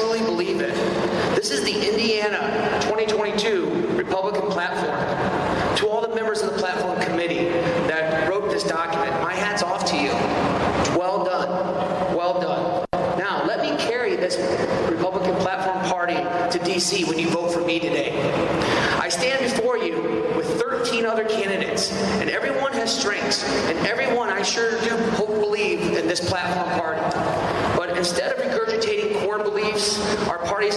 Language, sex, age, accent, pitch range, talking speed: English, male, 30-49, American, 175-210 Hz, 140 wpm